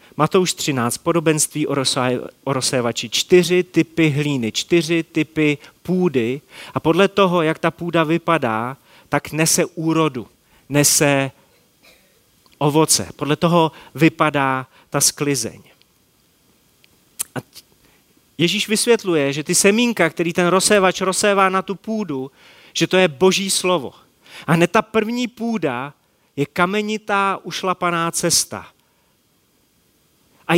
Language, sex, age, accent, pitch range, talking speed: Czech, male, 30-49, native, 140-185 Hz, 110 wpm